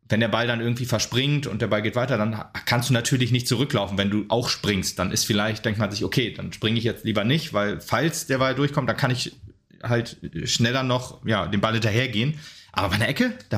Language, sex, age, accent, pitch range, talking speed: German, male, 30-49, German, 105-130 Hz, 235 wpm